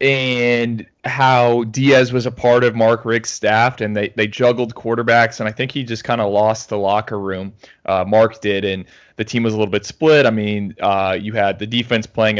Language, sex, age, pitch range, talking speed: English, male, 20-39, 105-115 Hz, 220 wpm